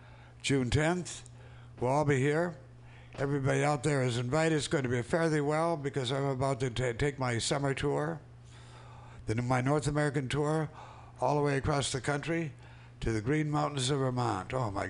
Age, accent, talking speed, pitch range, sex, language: 60-79, American, 180 wpm, 120-145 Hz, male, English